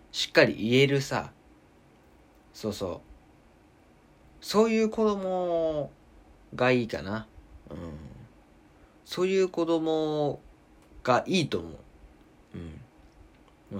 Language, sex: Japanese, male